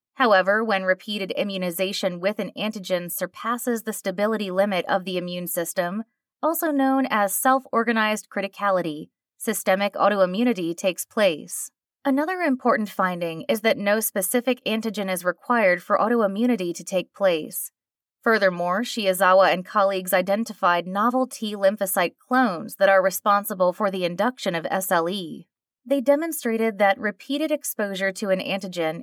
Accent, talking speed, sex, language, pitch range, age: American, 130 wpm, female, English, 185-230 Hz, 20-39